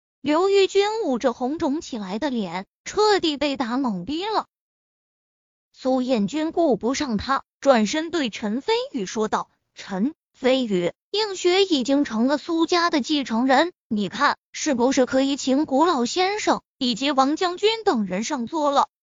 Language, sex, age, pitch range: Chinese, female, 20-39, 245-345 Hz